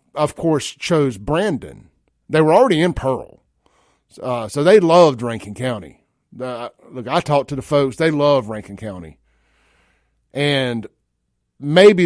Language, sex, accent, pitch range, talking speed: English, male, American, 120-165 Hz, 140 wpm